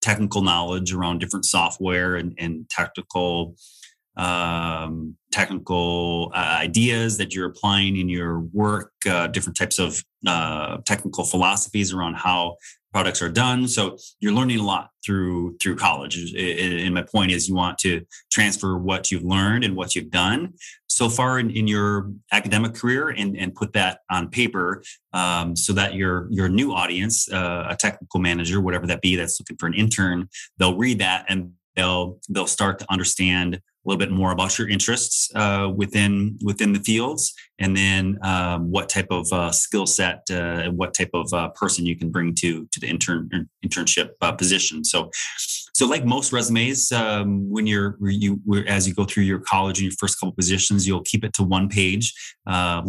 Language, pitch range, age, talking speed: English, 90-105 Hz, 30-49, 180 wpm